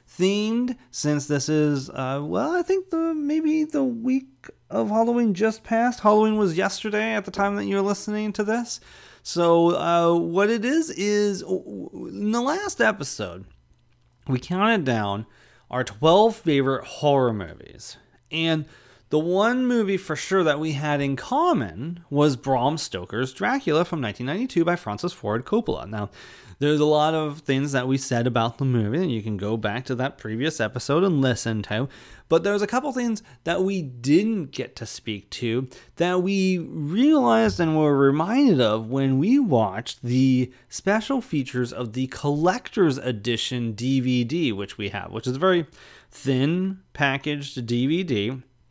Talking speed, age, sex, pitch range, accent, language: 160 wpm, 30-49, male, 125-200 Hz, American, English